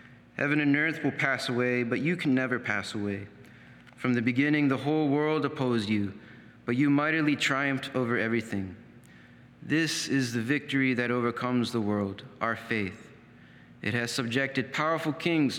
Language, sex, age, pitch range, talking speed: English, male, 30-49, 115-145 Hz, 160 wpm